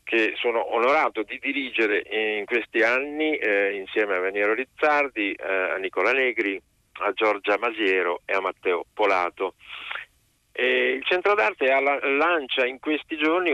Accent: native